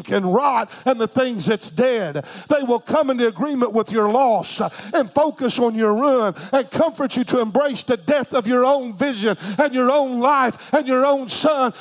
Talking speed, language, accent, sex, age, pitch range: 200 wpm, English, American, male, 50-69, 175-275 Hz